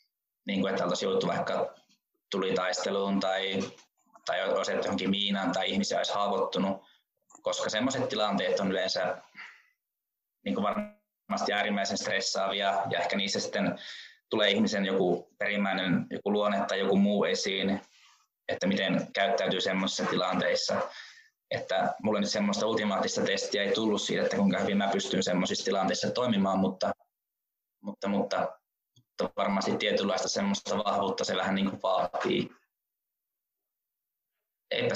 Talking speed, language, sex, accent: 120 wpm, Finnish, male, native